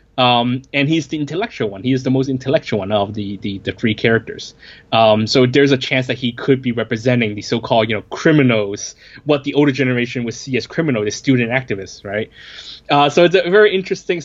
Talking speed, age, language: 215 wpm, 20-39, English